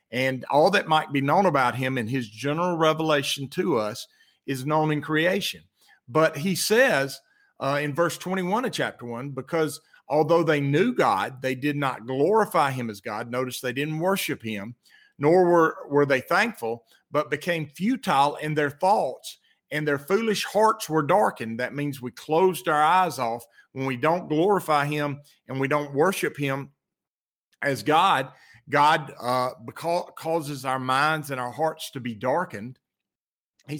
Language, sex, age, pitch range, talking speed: English, male, 50-69, 135-170 Hz, 165 wpm